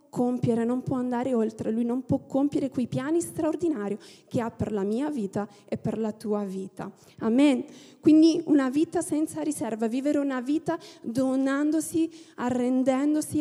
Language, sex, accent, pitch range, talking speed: Italian, female, native, 225-295 Hz, 150 wpm